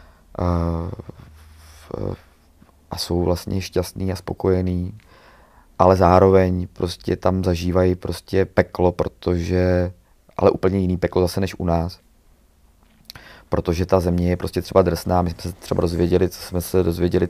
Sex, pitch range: male, 85-95 Hz